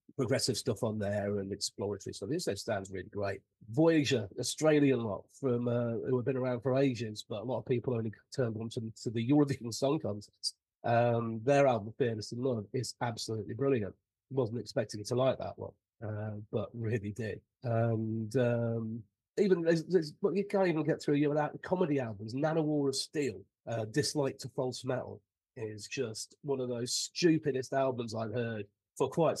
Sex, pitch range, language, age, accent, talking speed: male, 110-135 Hz, English, 30-49, British, 185 wpm